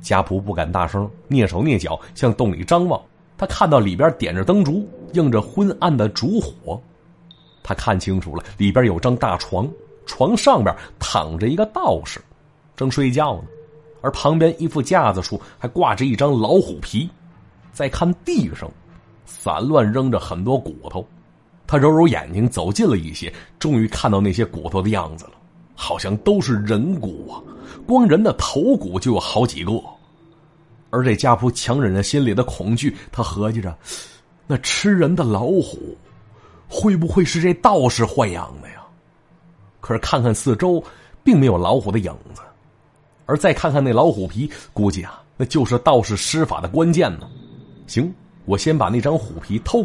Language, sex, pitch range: Chinese, male, 100-160 Hz